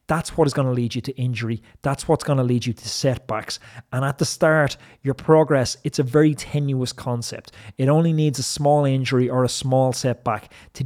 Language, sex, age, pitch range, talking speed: English, male, 30-49, 115-135 Hz, 215 wpm